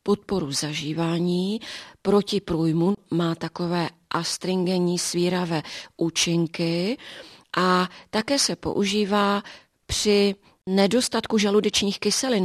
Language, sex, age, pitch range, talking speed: Czech, female, 30-49, 170-200 Hz, 80 wpm